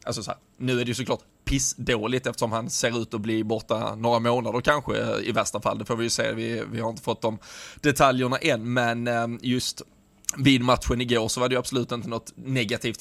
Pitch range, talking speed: 115-130 Hz, 210 wpm